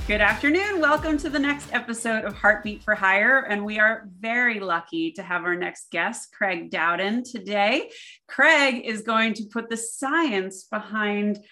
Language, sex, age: English, female, 30-49